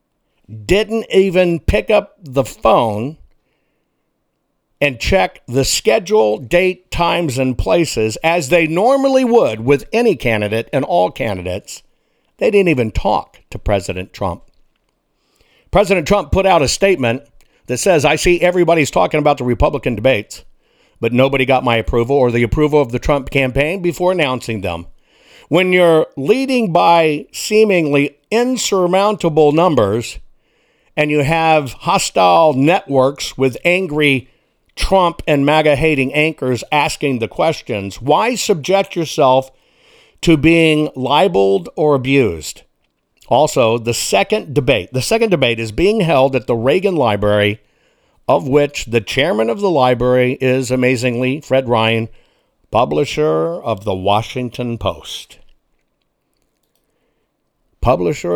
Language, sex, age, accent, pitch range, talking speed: English, male, 60-79, American, 120-170 Hz, 125 wpm